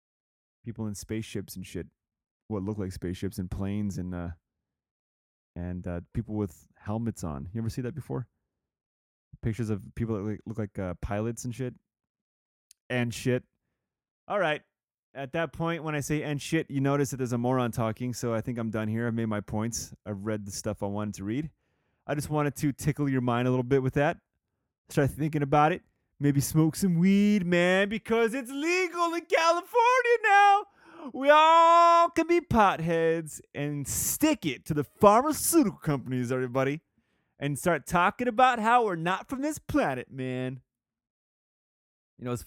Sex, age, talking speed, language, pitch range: male, 20-39, 180 wpm, English, 105-160 Hz